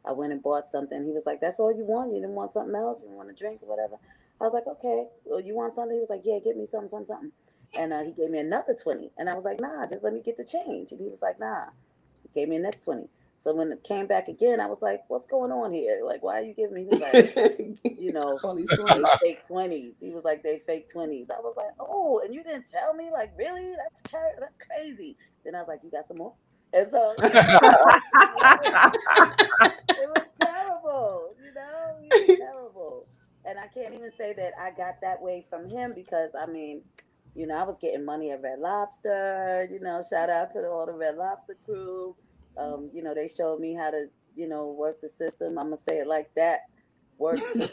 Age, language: 30-49, English